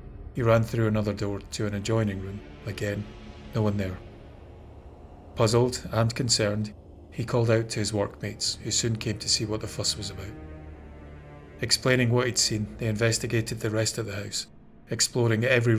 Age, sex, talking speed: 30-49, male, 170 wpm